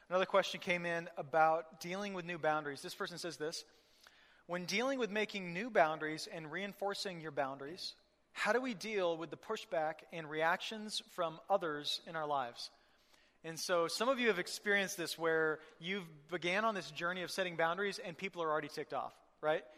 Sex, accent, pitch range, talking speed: male, American, 165-205 Hz, 185 wpm